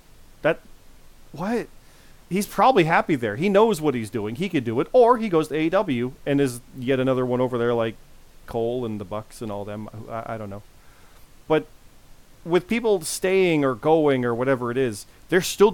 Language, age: English, 40-59